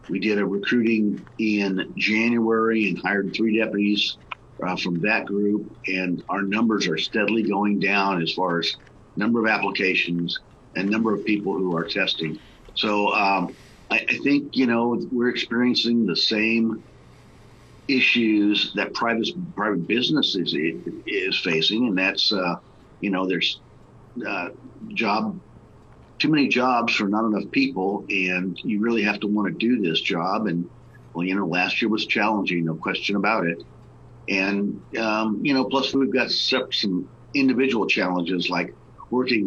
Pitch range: 95-115 Hz